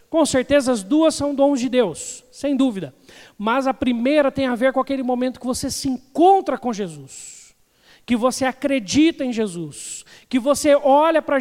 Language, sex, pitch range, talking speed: Portuguese, male, 240-295 Hz, 180 wpm